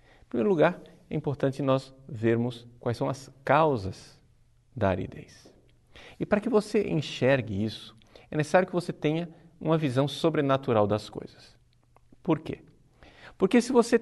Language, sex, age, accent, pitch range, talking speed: Portuguese, male, 50-69, Brazilian, 115-135 Hz, 145 wpm